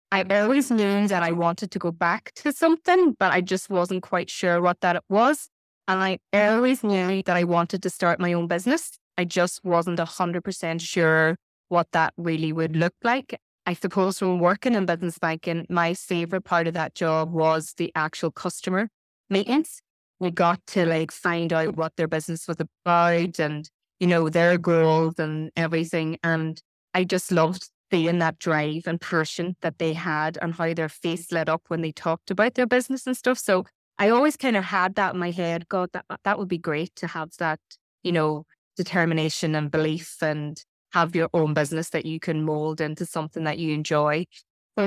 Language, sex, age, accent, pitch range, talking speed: English, female, 20-39, Irish, 160-190 Hz, 195 wpm